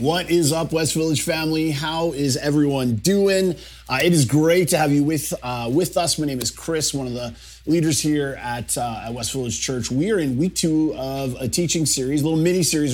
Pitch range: 130-160 Hz